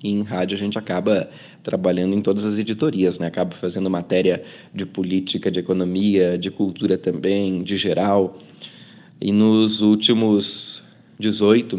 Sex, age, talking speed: male, 20-39, 145 wpm